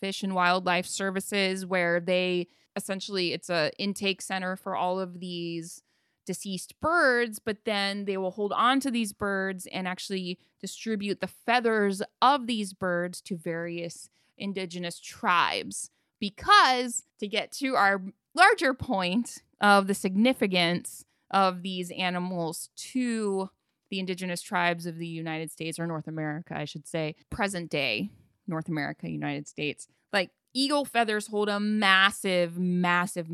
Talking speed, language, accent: 140 wpm, English, American